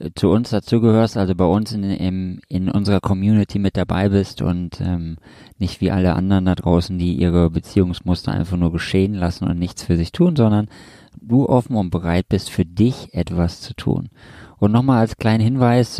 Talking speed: 190 wpm